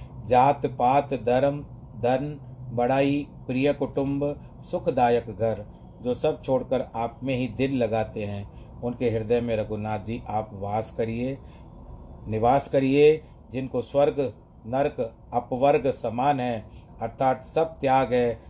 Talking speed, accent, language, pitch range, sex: 125 wpm, native, Hindi, 115-130 Hz, male